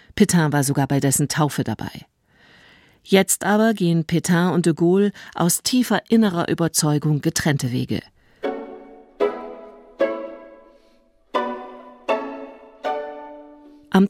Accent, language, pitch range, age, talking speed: German, German, 145-190 Hz, 50-69, 90 wpm